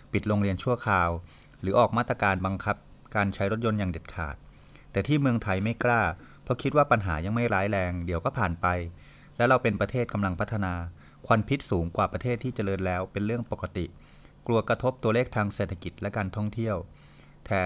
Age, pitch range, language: 20-39, 95-120 Hz, Thai